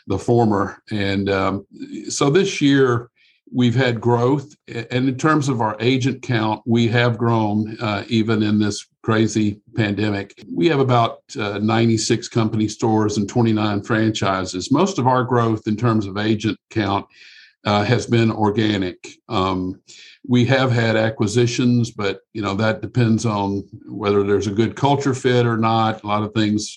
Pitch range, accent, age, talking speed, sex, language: 105-120 Hz, American, 50-69, 160 wpm, male, English